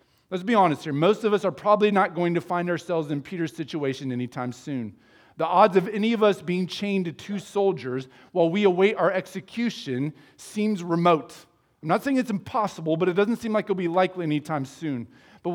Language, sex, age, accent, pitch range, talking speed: English, male, 40-59, American, 145-200 Hz, 205 wpm